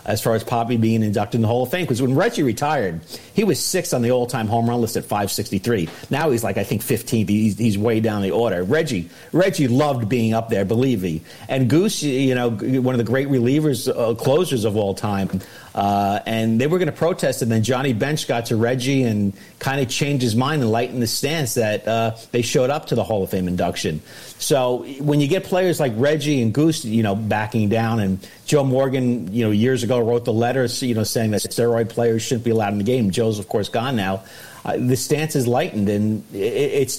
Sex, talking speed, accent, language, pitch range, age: male, 225 wpm, American, English, 115-145 Hz, 50-69